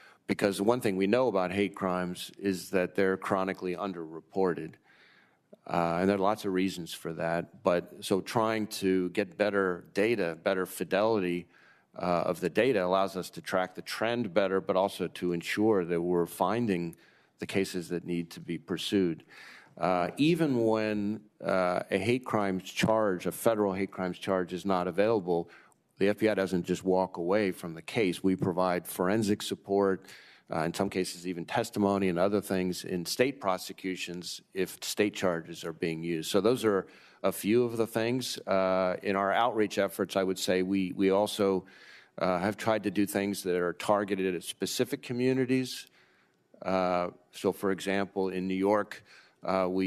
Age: 40-59